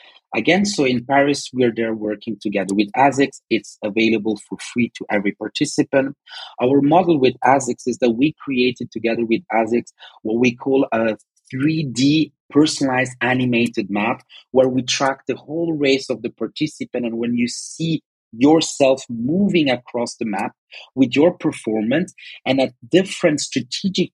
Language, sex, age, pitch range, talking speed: English, male, 40-59, 120-145 Hz, 155 wpm